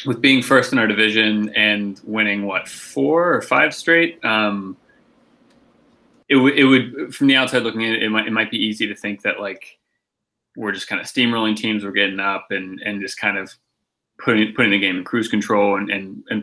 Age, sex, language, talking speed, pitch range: 20-39, male, English, 210 wpm, 105-130 Hz